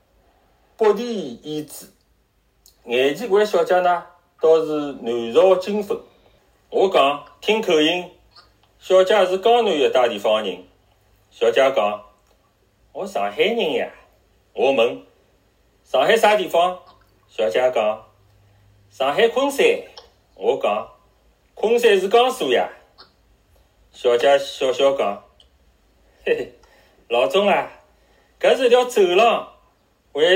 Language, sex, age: Chinese, male, 30-49